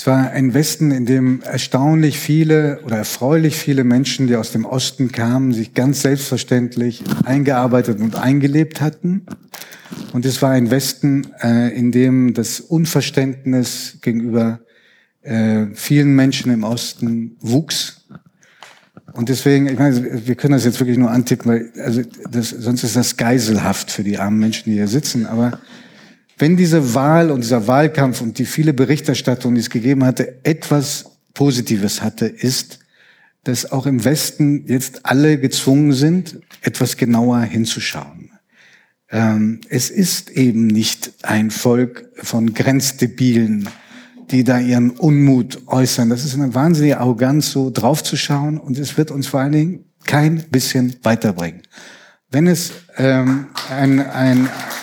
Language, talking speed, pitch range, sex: German, 145 wpm, 120-145 Hz, male